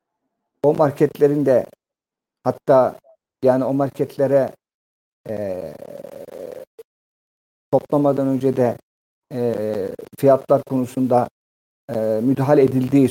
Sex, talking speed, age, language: male, 75 wpm, 50-69, Turkish